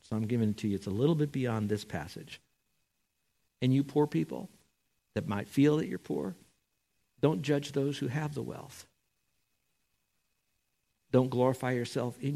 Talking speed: 165 wpm